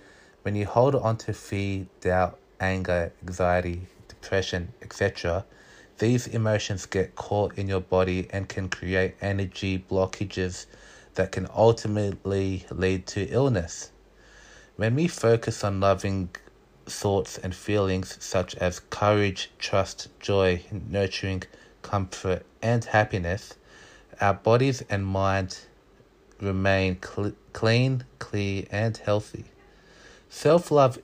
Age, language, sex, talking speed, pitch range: 30-49, English, male, 110 wpm, 95-110 Hz